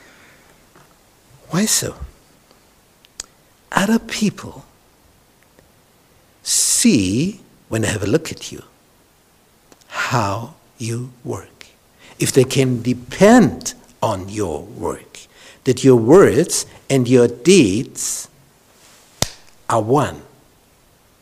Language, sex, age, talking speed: English, male, 60-79, 85 wpm